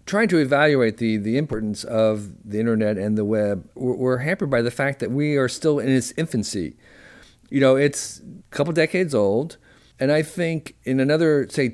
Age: 50-69